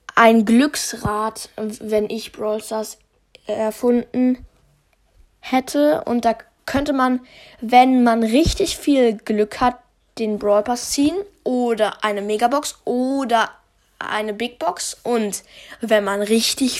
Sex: female